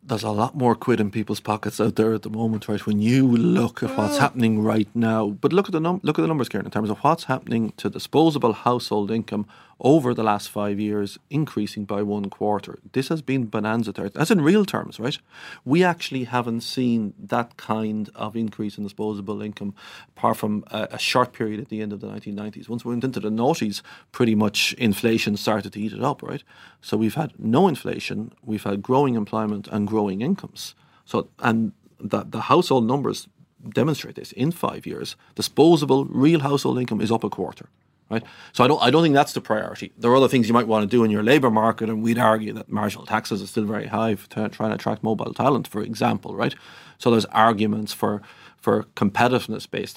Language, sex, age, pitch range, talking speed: English, male, 40-59, 105-125 Hz, 215 wpm